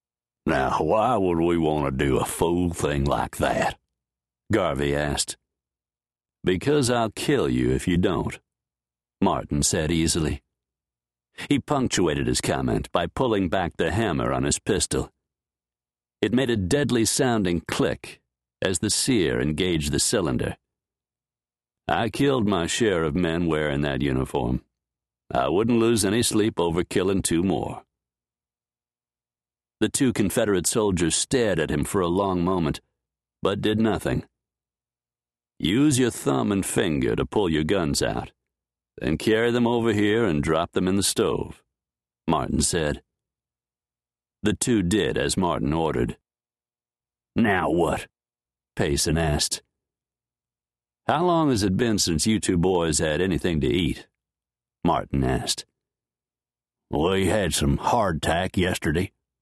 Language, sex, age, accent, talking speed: English, male, 60-79, American, 135 wpm